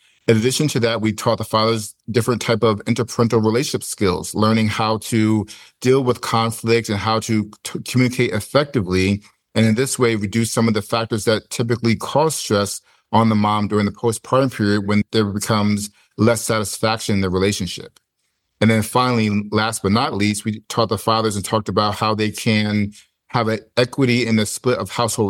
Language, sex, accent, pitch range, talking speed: English, male, American, 105-120 Hz, 185 wpm